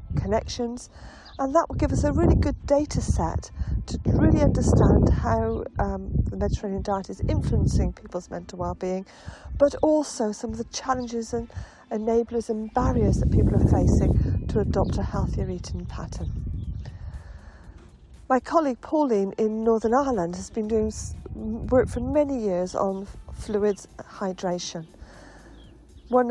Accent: British